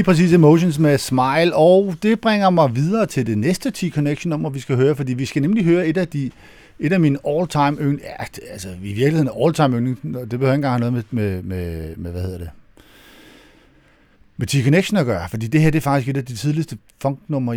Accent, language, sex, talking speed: native, Danish, male, 220 wpm